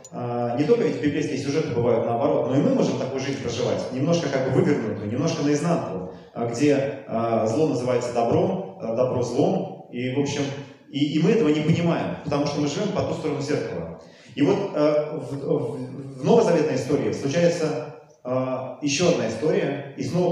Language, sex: Russian, male